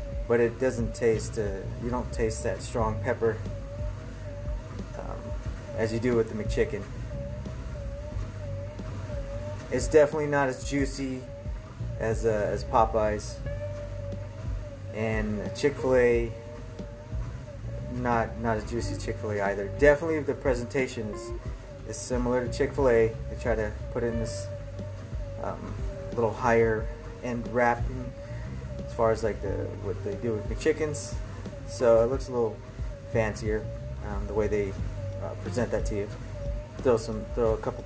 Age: 20-39